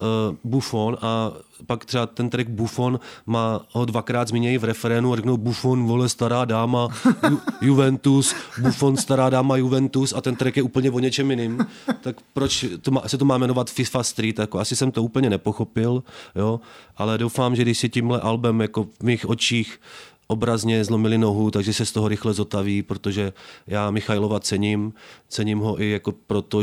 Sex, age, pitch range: male, 30-49, 105-120 Hz